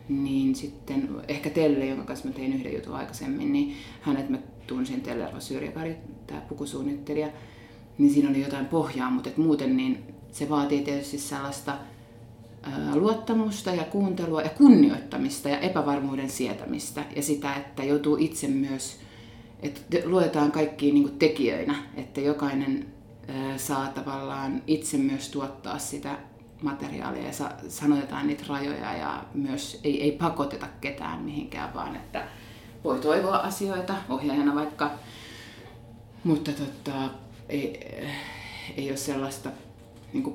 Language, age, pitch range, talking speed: Finnish, 30-49, 135-155 Hz, 120 wpm